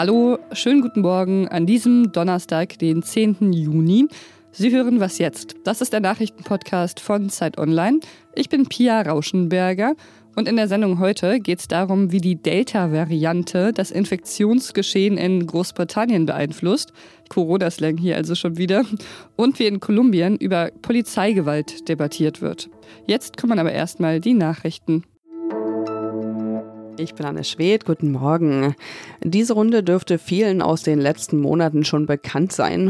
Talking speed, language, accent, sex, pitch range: 140 wpm, German, German, female, 145-195 Hz